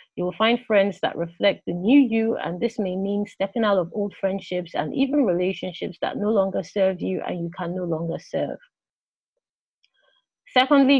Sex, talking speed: female, 180 wpm